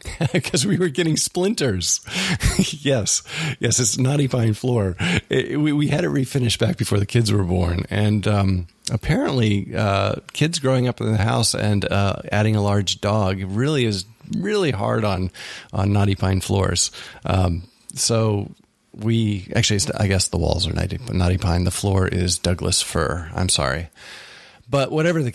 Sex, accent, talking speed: male, American, 170 wpm